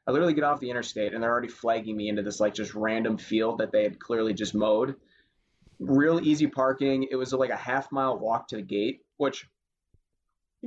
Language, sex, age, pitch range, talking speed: English, male, 20-39, 110-130 Hz, 215 wpm